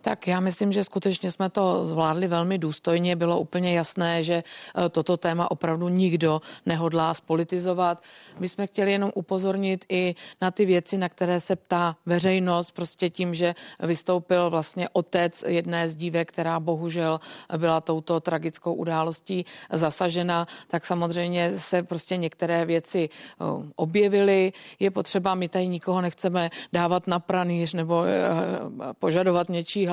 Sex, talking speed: female, 140 wpm